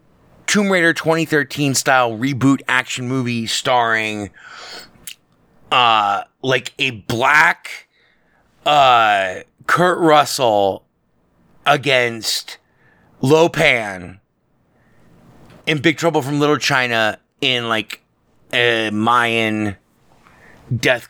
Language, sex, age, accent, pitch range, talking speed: English, male, 30-49, American, 110-150 Hz, 80 wpm